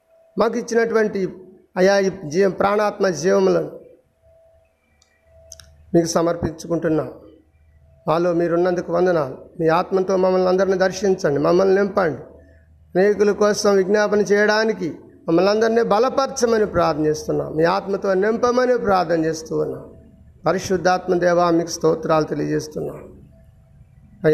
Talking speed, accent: 90 wpm, native